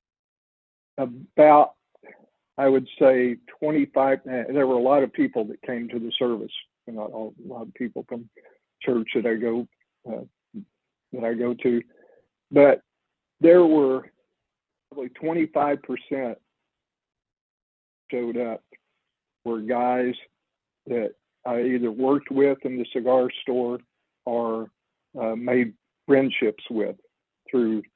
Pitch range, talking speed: 115-140 Hz, 120 wpm